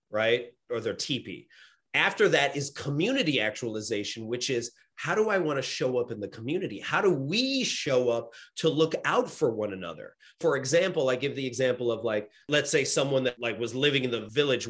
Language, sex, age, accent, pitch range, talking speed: English, male, 30-49, American, 130-165 Hz, 205 wpm